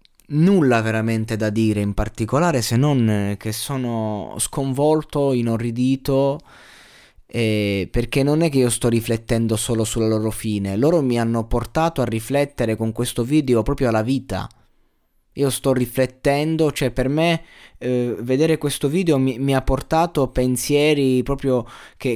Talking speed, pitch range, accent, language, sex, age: 145 wpm, 105-135 Hz, native, Italian, male, 20-39